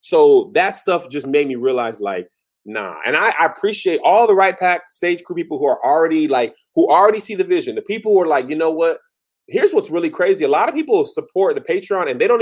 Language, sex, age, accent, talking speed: English, male, 20-39, American, 240 wpm